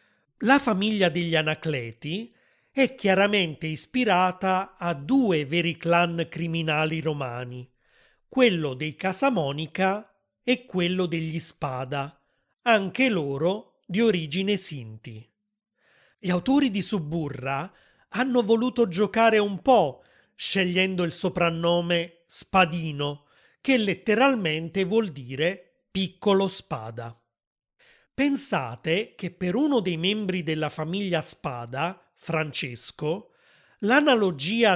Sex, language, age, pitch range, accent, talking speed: male, Italian, 30-49, 155-210 Hz, native, 95 wpm